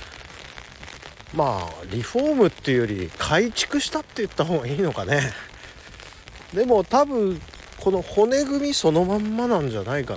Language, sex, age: Japanese, male, 50-69